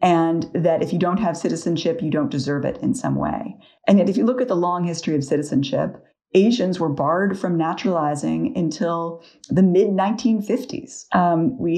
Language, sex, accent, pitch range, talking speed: English, female, American, 155-210 Hz, 170 wpm